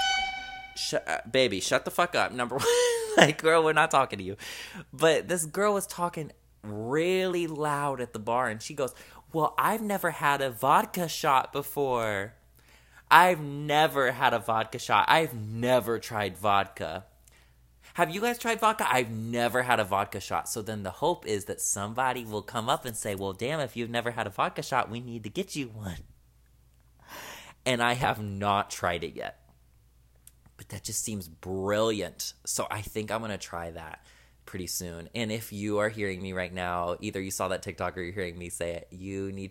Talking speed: 190 wpm